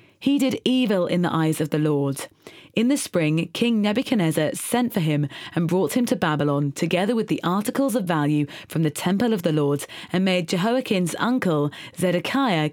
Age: 30-49